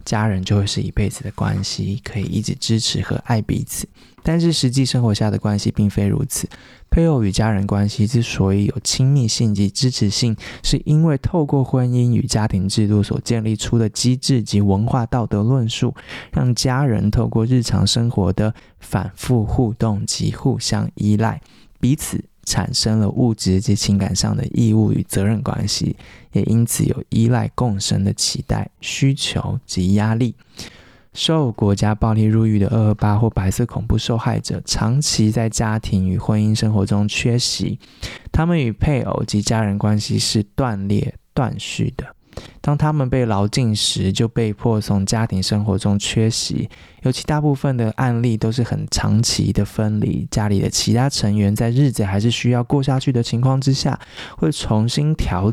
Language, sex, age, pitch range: Chinese, male, 20-39, 105-125 Hz